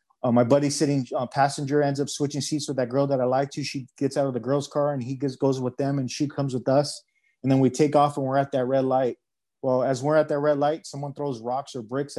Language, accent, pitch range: English, American, 125-145 Hz